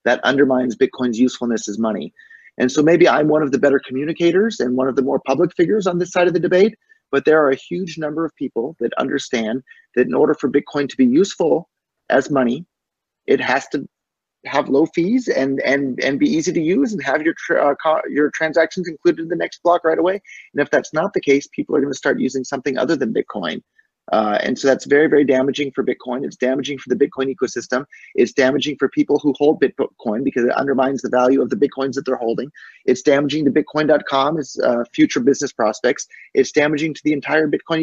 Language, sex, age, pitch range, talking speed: English, male, 30-49, 135-165 Hz, 220 wpm